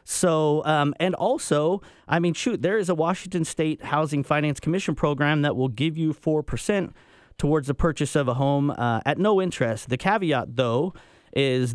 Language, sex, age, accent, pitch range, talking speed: English, male, 30-49, American, 135-170 Hz, 185 wpm